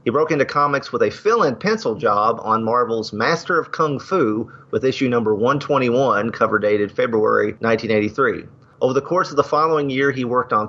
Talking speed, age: 185 wpm, 40-59